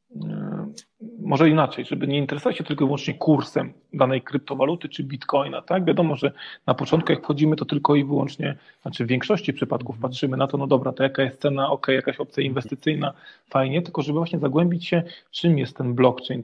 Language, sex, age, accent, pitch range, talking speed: Polish, male, 30-49, native, 130-155 Hz, 195 wpm